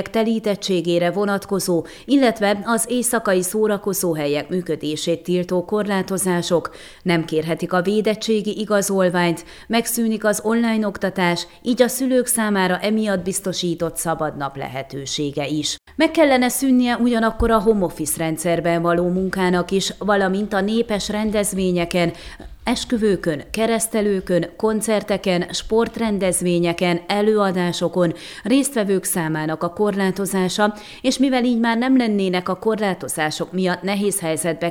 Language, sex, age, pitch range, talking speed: Hungarian, female, 30-49, 170-215 Hz, 110 wpm